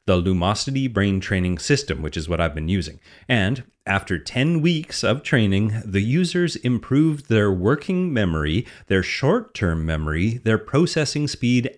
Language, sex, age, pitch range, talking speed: English, male, 30-49, 95-130 Hz, 150 wpm